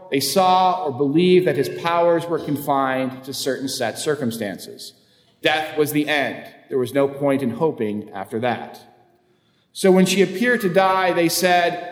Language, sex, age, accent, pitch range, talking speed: English, male, 40-59, American, 140-180 Hz, 165 wpm